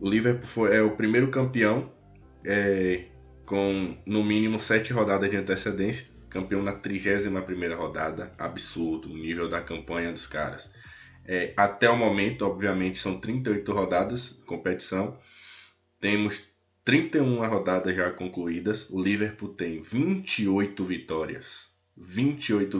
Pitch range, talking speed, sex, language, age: 90-110 Hz, 120 wpm, male, Portuguese, 20-39